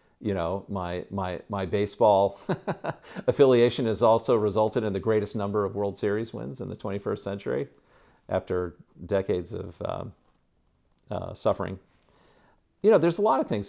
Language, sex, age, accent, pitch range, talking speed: English, male, 50-69, American, 95-115 Hz, 155 wpm